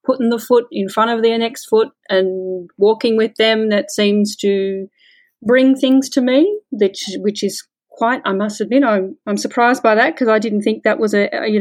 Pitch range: 195-255 Hz